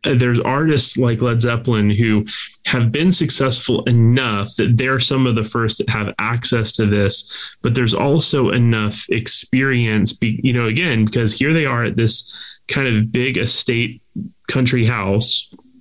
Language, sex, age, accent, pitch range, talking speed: English, male, 20-39, American, 115-135 Hz, 155 wpm